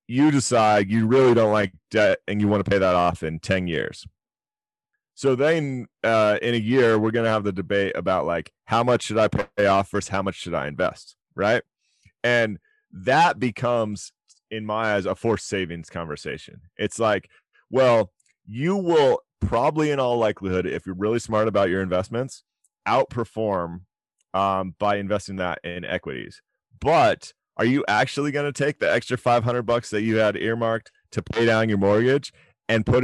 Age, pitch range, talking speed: 30-49, 100-125 Hz, 180 wpm